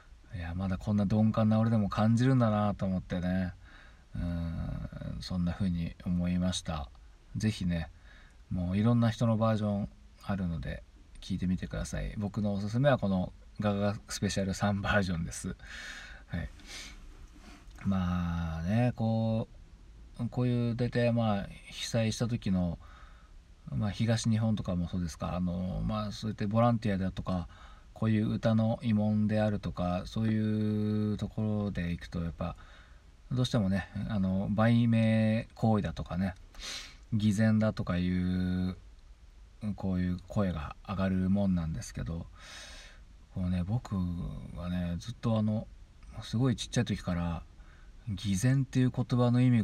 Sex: male